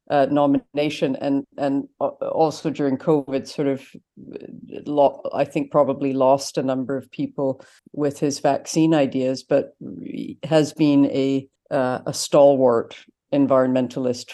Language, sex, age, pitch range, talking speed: English, female, 50-69, 130-160 Hz, 125 wpm